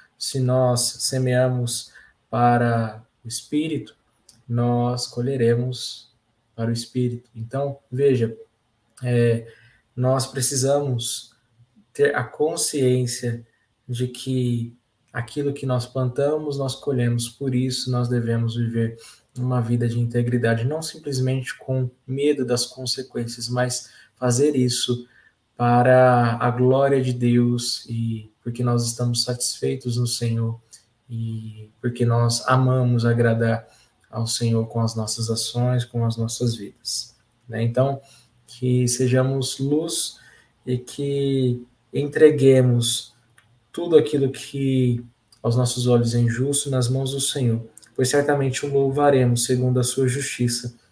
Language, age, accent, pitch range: Portuguese, 20-39, Brazilian, 115-130 Hz